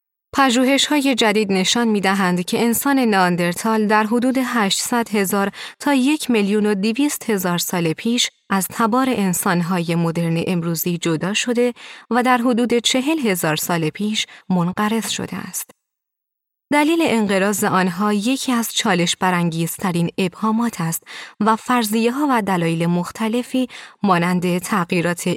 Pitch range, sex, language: 180-240 Hz, female, Persian